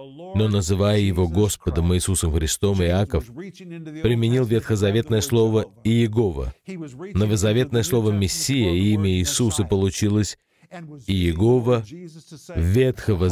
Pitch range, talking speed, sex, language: 90-115 Hz, 90 wpm, male, Russian